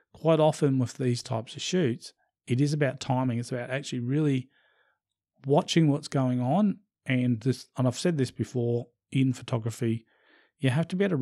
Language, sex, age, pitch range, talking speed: English, male, 40-59, 115-135 Hz, 180 wpm